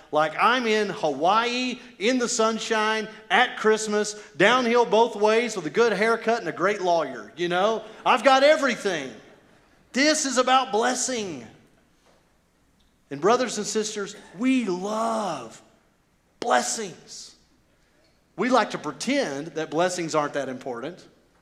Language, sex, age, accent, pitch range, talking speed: English, male, 40-59, American, 175-245 Hz, 125 wpm